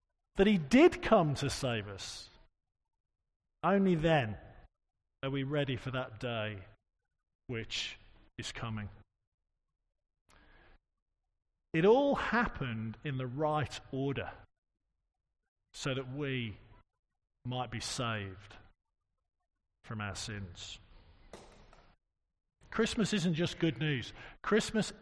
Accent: British